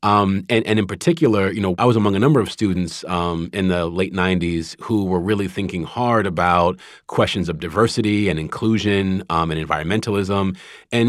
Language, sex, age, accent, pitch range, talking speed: English, male, 30-49, American, 95-110 Hz, 185 wpm